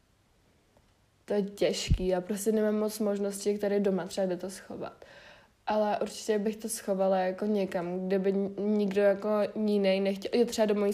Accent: native